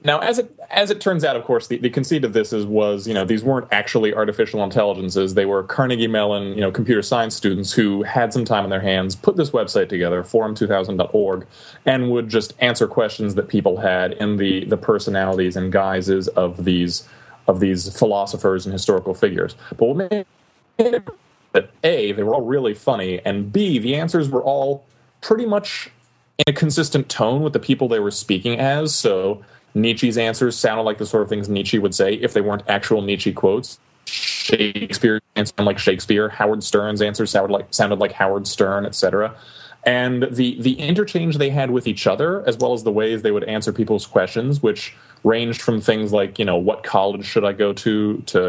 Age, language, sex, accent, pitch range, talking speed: 30-49, English, male, American, 100-135 Hz, 200 wpm